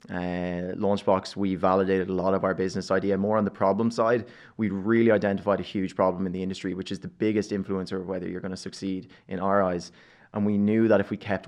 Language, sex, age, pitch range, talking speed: English, male, 20-39, 95-110 Hz, 235 wpm